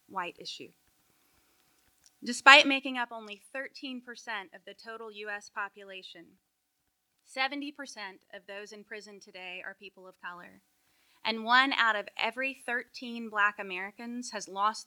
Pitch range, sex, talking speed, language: 195-240 Hz, female, 130 wpm, English